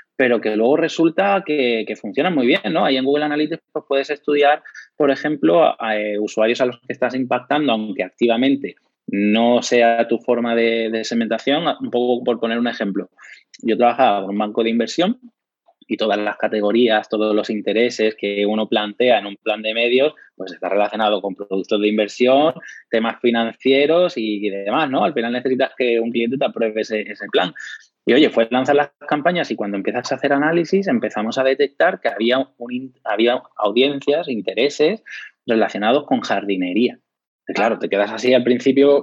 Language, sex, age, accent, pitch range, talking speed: Spanish, male, 20-39, Spanish, 110-140 Hz, 175 wpm